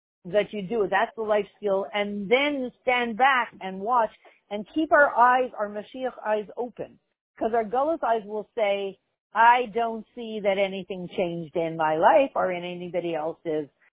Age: 50-69